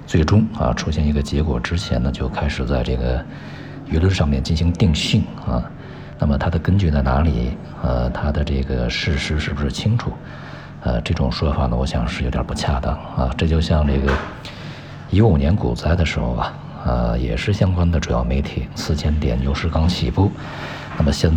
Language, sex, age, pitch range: Chinese, male, 50-69, 65-85 Hz